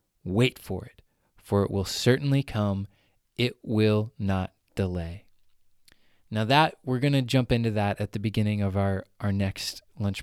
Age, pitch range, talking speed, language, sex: 20-39, 105-135 Hz, 165 wpm, English, male